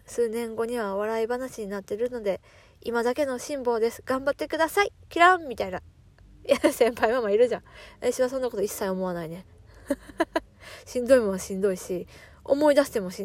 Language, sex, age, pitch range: Japanese, female, 20-39, 185-290 Hz